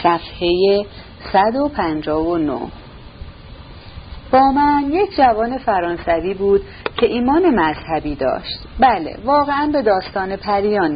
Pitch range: 165-255 Hz